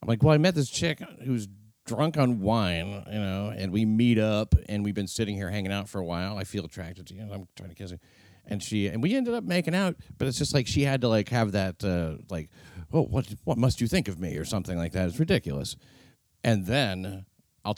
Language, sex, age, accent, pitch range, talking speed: English, male, 40-59, American, 90-115 Hz, 250 wpm